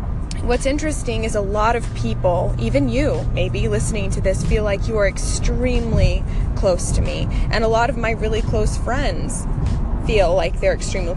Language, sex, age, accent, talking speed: English, female, 20-39, American, 175 wpm